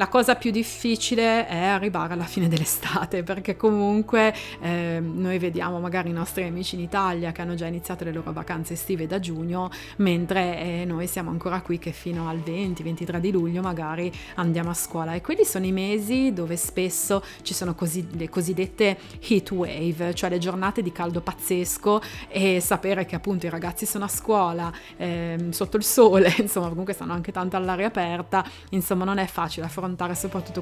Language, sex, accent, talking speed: Italian, female, native, 180 wpm